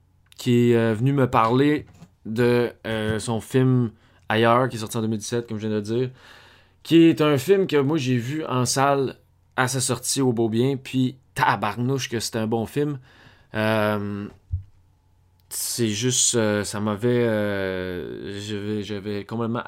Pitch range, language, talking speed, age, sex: 105-130 Hz, French, 165 wpm, 20-39, male